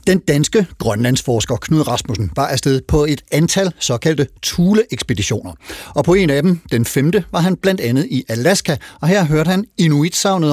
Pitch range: 120-180 Hz